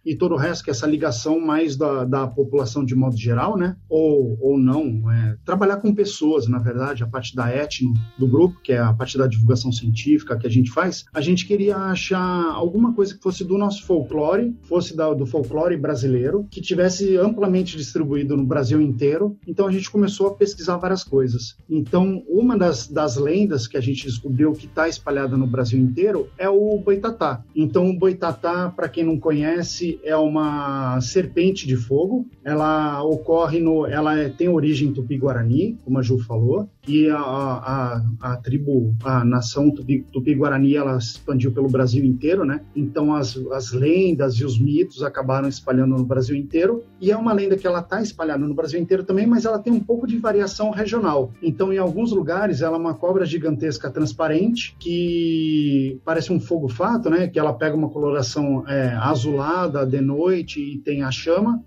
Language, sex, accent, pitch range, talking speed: Portuguese, male, Brazilian, 135-180 Hz, 190 wpm